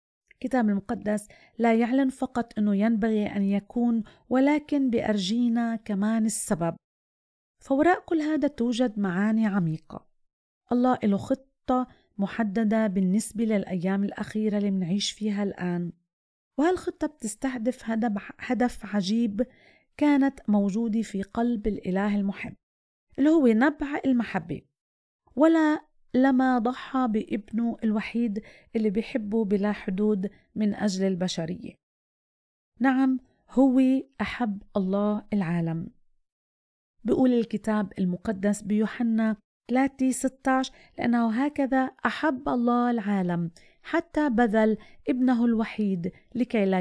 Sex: female